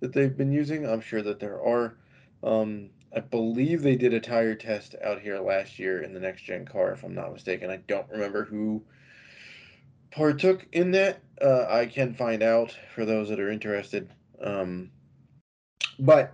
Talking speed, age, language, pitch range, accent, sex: 180 wpm, 20-39, English, 110-140 Hz, American, male